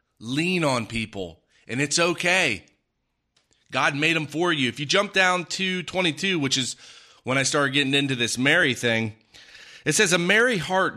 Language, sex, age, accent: English, male, 30-49, American